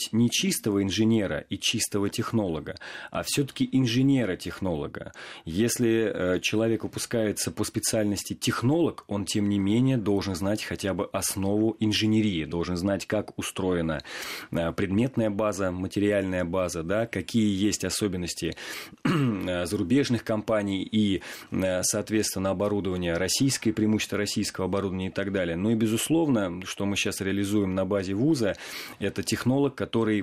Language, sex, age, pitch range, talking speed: Russian, male, 30-49, 100-115 Hz, 125 wpm